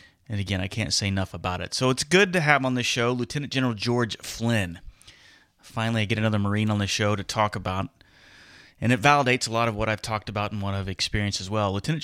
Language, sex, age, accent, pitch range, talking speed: English, male, 30-49, American, 95-115 Hz, 240 wpm